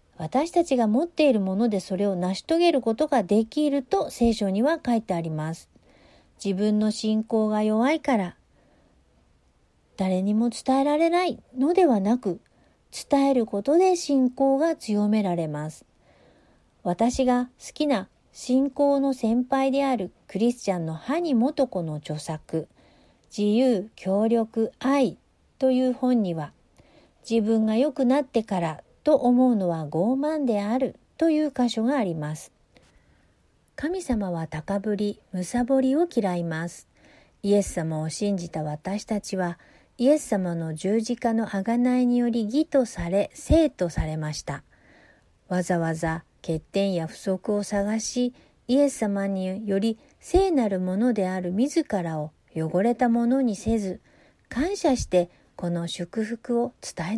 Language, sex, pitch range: Japanese, female, 180-260 Hz